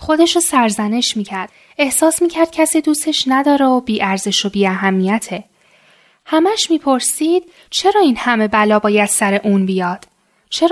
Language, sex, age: Persian, female, 10-29